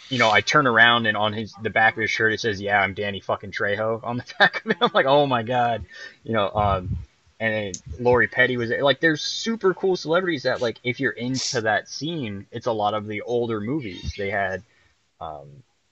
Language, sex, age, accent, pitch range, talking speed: English, male, 20-39, American, 100-120 Hz, 225 wpm